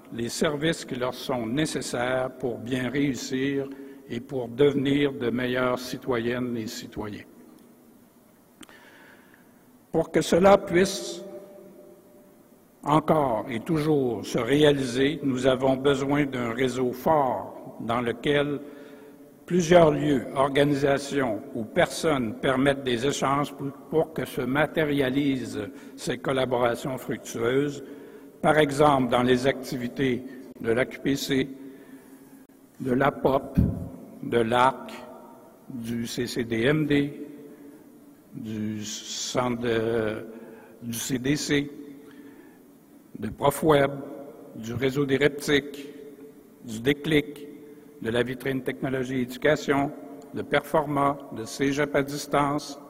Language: French